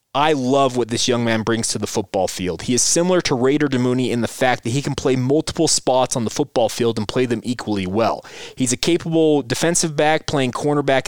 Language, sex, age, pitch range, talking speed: English, male, 20-39, 115-135 Hz, 225 wpm